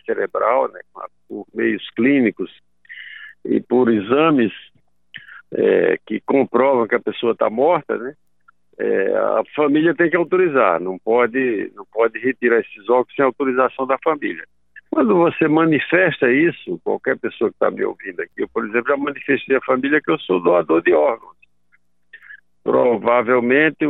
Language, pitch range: Portuguese, 120-170 Hz